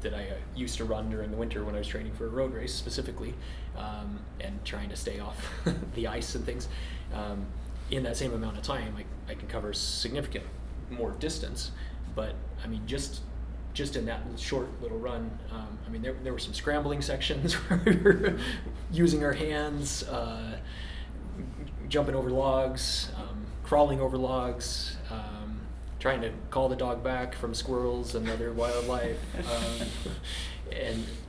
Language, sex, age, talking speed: English, male, 20-39, 165 wpm